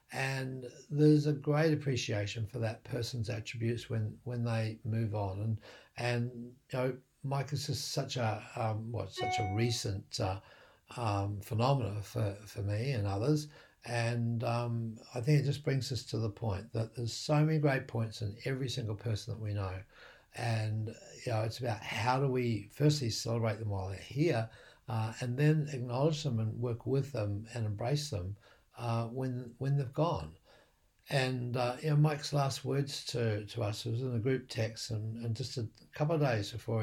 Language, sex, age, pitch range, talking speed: English, male, 60-79, 110-140 Hz, 185 wpm